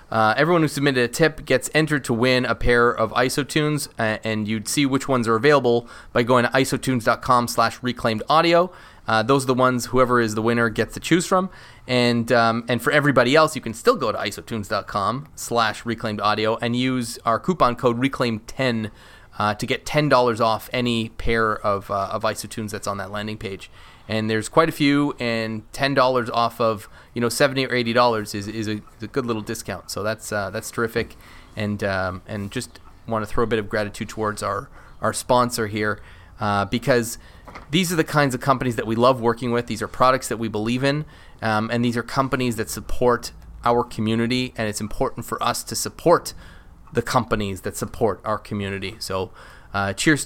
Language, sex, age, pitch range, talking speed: English, male, 20-39, 105-125 Hz, 195 wpm